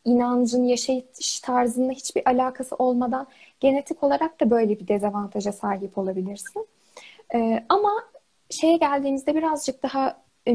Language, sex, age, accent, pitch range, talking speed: Turkish, female, 10-29, native, 230-305 Hz, 120 wpm